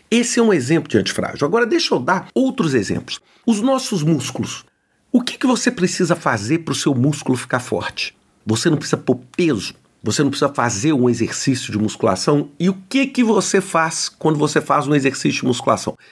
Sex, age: male, 50-69